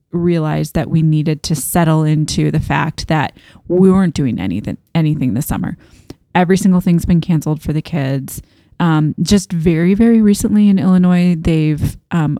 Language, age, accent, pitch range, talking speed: English, 20-39, American, 155-180 Hz, 165 wpm